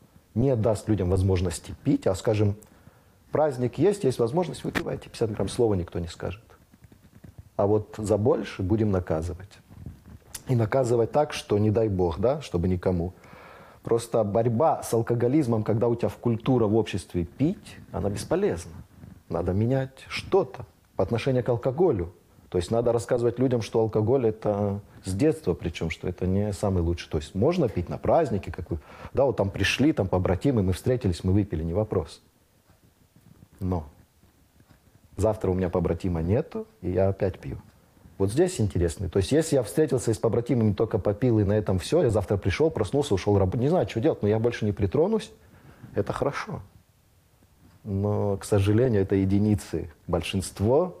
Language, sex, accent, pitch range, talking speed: Ukrainian, male, native, 95-115 Hz, 165 wpm